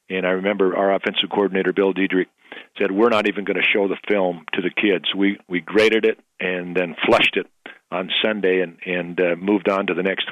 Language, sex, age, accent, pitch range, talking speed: English, male, 50-69, American, 95-105 Hz, 220 wpm